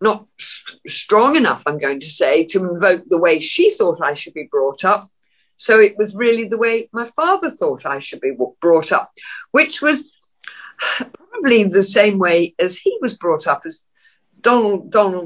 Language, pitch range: English, 190-275 Hz